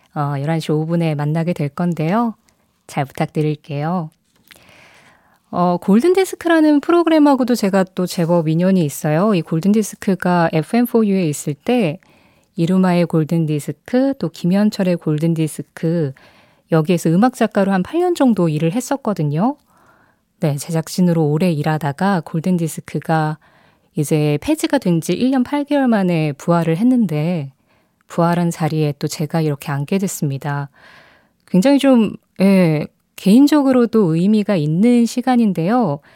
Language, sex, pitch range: Korean, female, 160-215 Hz